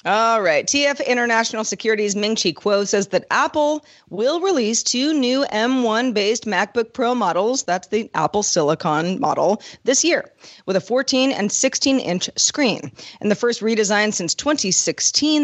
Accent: American